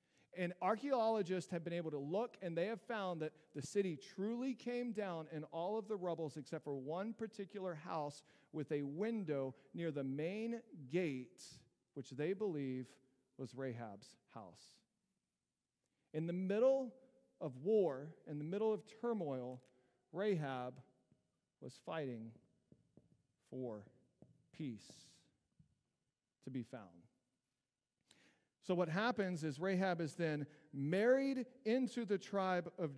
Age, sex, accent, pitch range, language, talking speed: 40-59, male, American, 145-200 Hz, English, 125 wpm